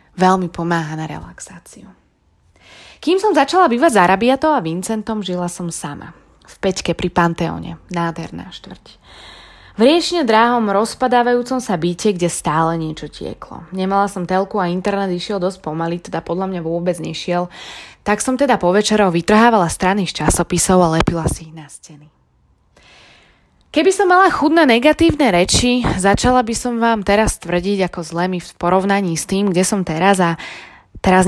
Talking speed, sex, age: 160 wpm, female, 20-39